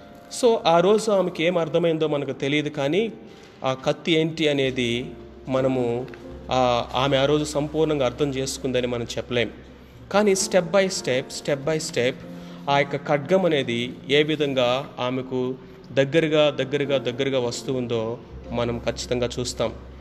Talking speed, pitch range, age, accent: 130 wpm, 125-155 Hz, 30-49, native